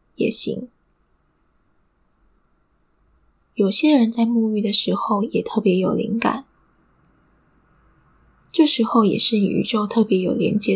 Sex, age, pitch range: female, 20-39, 205-230 Hz